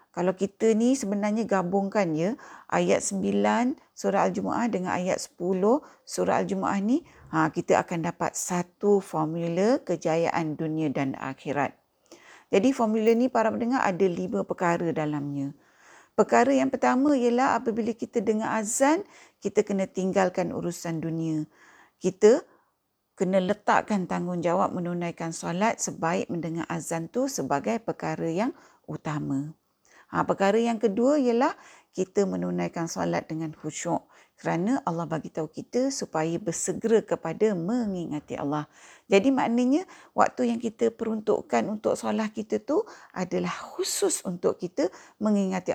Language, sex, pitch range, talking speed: Malay, female, 170-230 Hz, 130 wpm